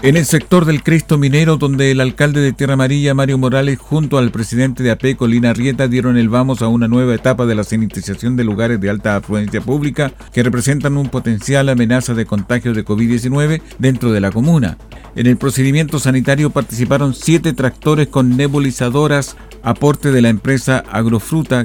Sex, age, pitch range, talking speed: male, 50-69, 115-140 Hz, 175 wpm